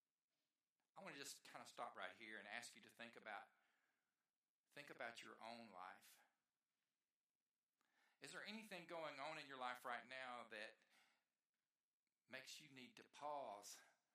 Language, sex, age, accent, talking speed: English, male, 50-69, American, 155 wpm